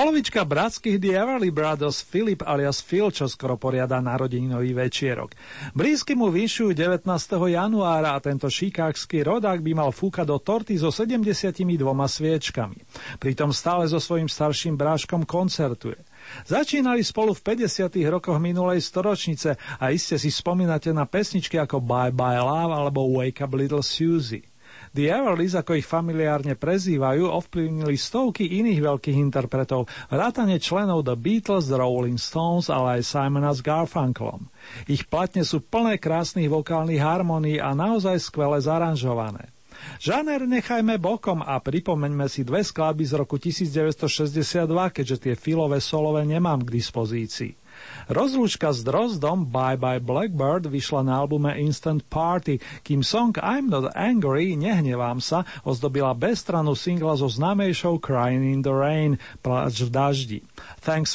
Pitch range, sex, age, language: 135-180 Hz, male, 40-59, Slovak